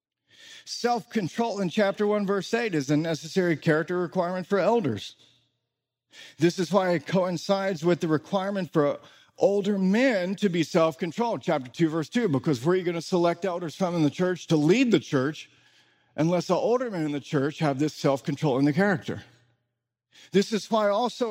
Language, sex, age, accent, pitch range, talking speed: English, male, 50-69, American, 145-200 Hz, 180 wpm